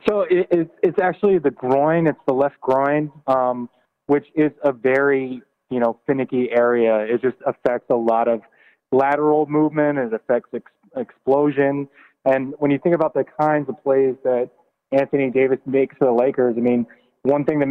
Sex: male